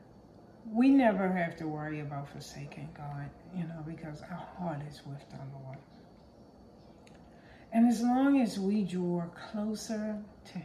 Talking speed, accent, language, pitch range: 140 wpm, American, English, 155-220 Hz